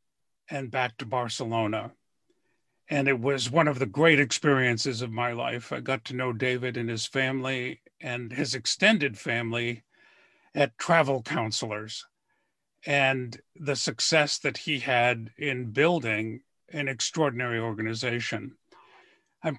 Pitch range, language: 130-165 Hz, English